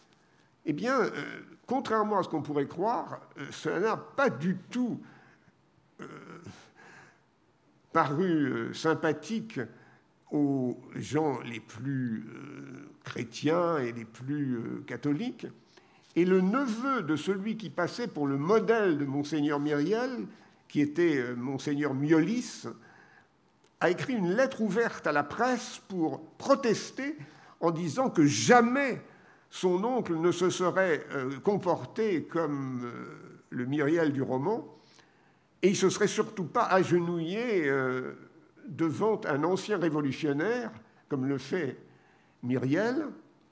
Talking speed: 120 wpm